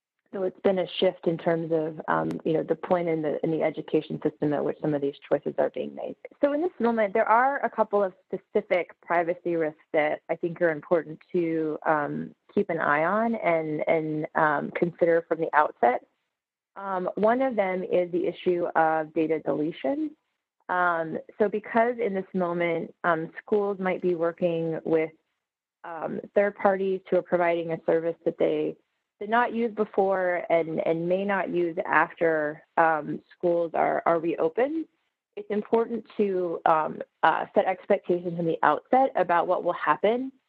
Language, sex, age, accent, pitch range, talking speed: English, female, 20-39, American, 160-200 Hz, 175 wpm